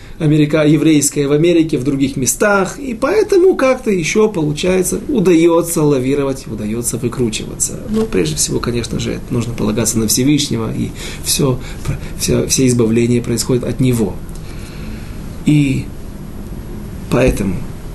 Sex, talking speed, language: male, 115 wpm, Russian